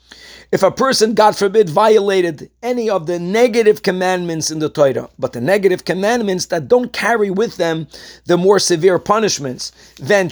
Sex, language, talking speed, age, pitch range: male, English, 165 wpm, 50-69, 170-220 Hz